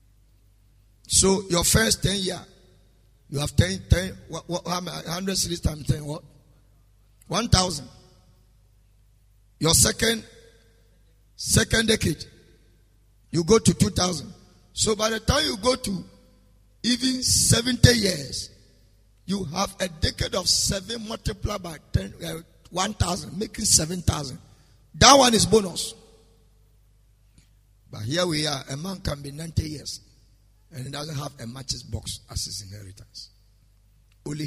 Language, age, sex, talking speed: English, 50-69, male, 120 wpm